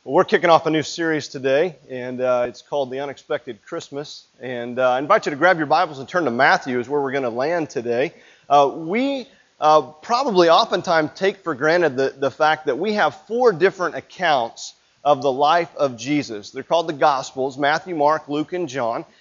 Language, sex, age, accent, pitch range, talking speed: English, male, 30-49, American, 140-175 Hz, 205 wpm